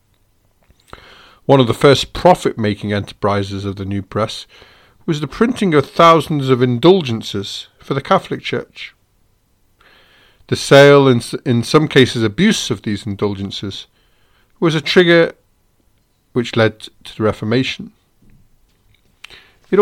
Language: English